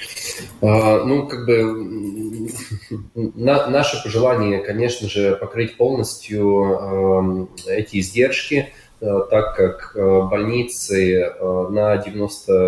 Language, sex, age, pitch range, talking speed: Russian, male, 20-39, 95-110 Hz, 75 wpm